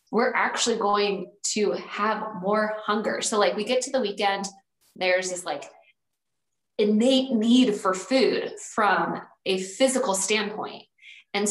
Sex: female